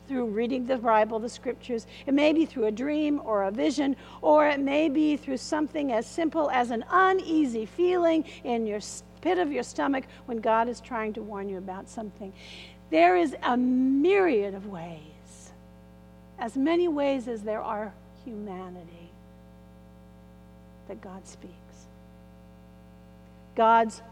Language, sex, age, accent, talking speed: English, female, 50-69, American, 145 wpm